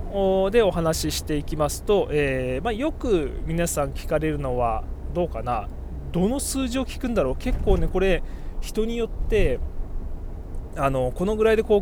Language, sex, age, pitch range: Japanese, male, 20-39, 130-195 Hz